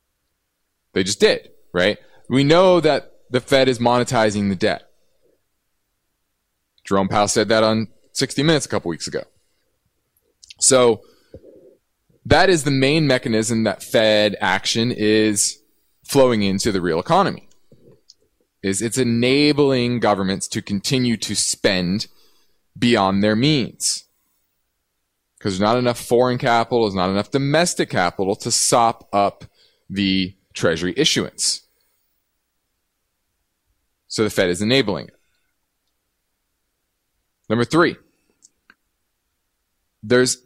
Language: English